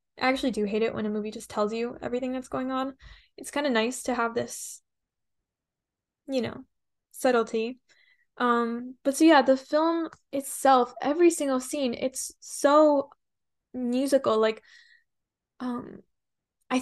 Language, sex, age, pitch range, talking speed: English, female, 10-29, 225-270 Hz, 145 wpm